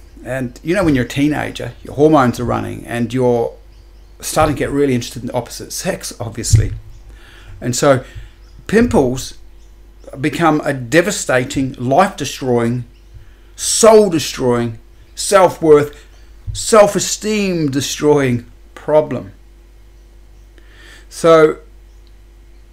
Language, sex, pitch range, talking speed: English, male, 110-145 Hz, 90 wpm